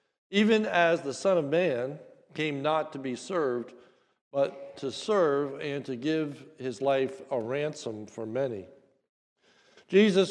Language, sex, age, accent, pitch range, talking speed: English, male, 60-79, American, 130-170 Hz, 140 wpm